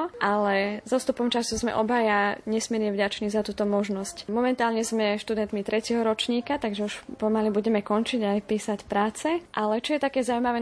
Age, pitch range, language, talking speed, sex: 20-39, 200-225 Hz, Slovak, 160 wpm, female